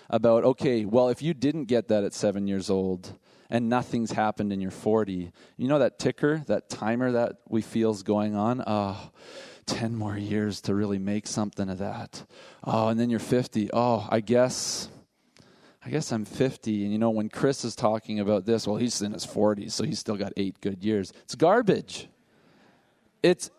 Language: English